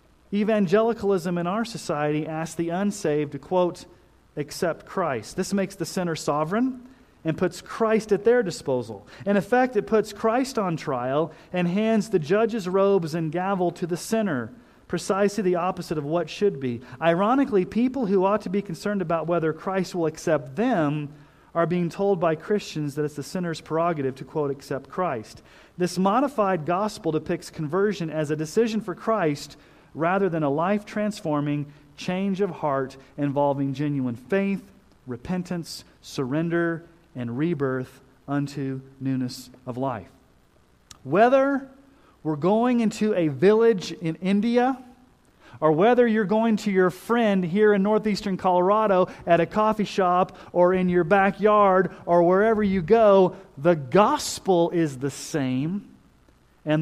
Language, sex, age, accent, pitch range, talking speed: English, male, 40-59, American, 155-205 Hz, 145 wpm